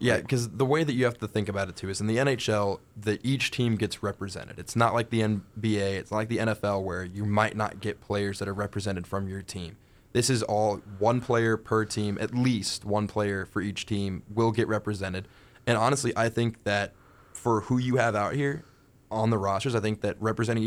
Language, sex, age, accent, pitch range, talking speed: English, male, 20-39, American, 100-115 Hz, 225 wpm